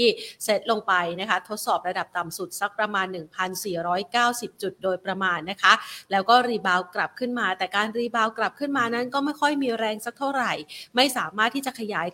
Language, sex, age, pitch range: Thai, female, 30-49, 195-235 Hz